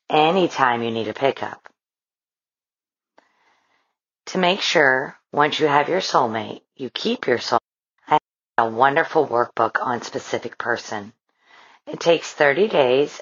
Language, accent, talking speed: English, American, 130 wpm